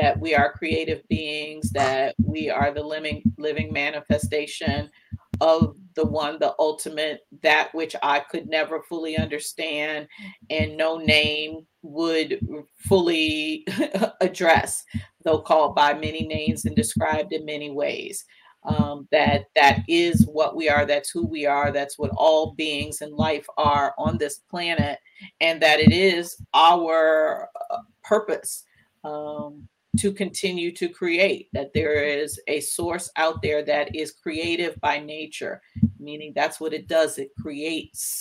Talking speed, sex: 140 wpm, female